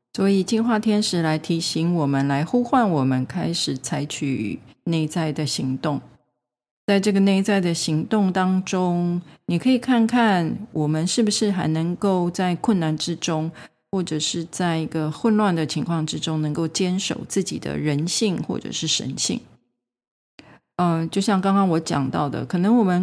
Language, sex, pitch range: Chinese, female, 150-190 Hz